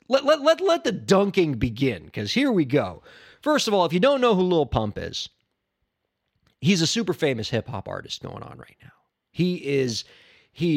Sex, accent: male, American